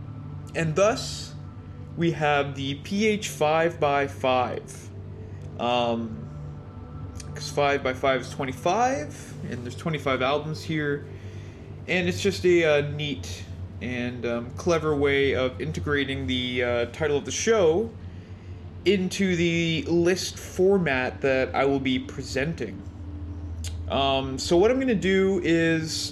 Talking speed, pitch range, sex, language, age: 120 wpm, 105-155 Hz, male, English, 20-39